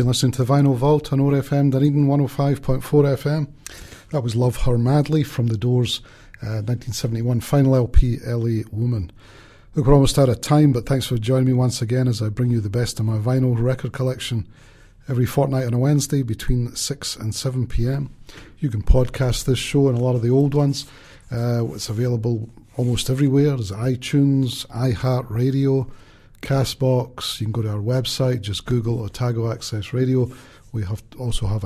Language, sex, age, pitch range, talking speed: English, male, 40-59, 115-135 Hz, 180 wpm